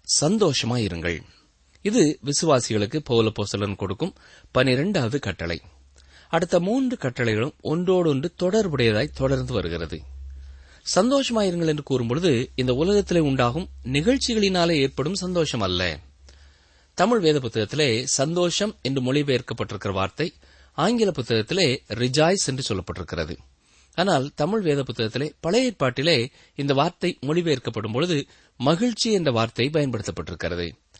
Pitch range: 105-165 Hz